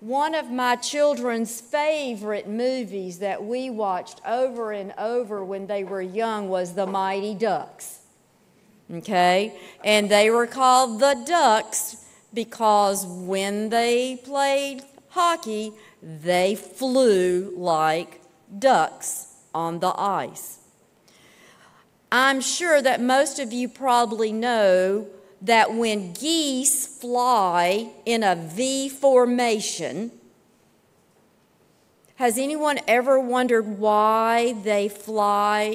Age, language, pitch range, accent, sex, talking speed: 50-69, English, 195-250 Hz, American, female, 105 wpm